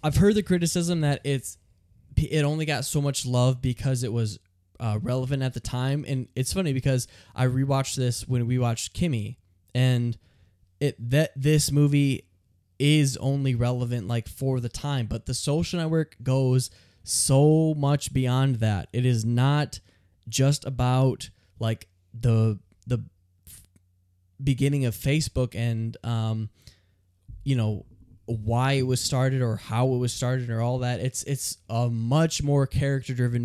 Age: 10-29